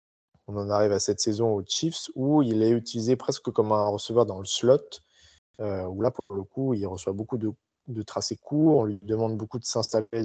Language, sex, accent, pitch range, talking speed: French, male, French, 100-125 Hz, 220 wpm